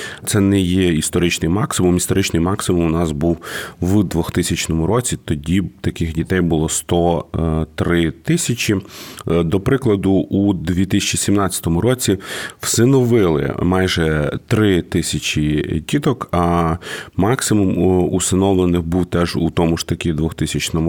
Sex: male